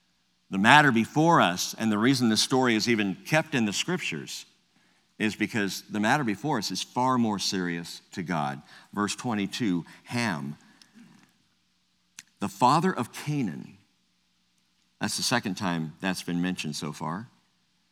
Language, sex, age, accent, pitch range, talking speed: English, male, 50-69, American, 90-130 Hz, 145 wpm